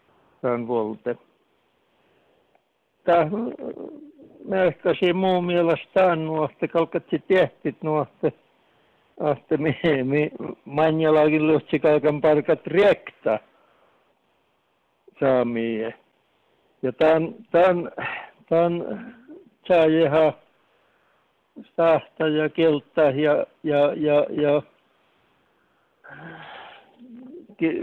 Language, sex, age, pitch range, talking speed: Finnish, male, 60-79, 140-170 Hz, 70 wpm